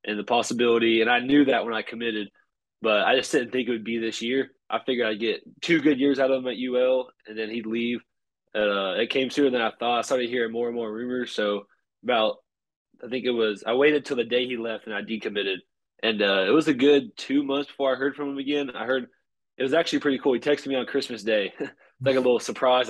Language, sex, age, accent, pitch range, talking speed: English, male, 20-39, American, 105-130 Hz, 255 wpm